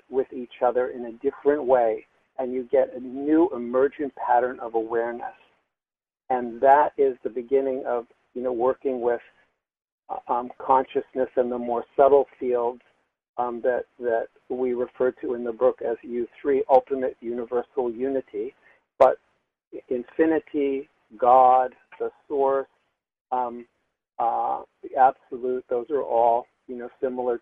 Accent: American